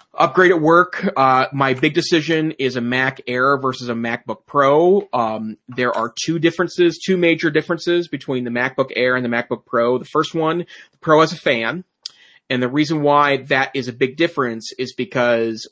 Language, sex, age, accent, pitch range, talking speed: English, male, 30-49, American, 120-155 Hz, 190 wpm